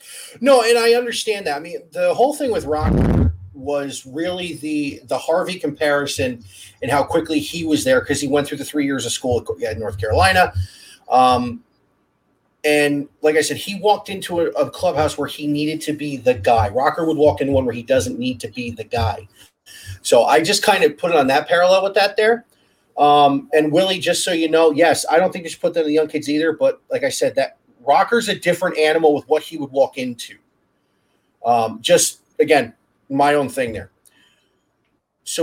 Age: 30-49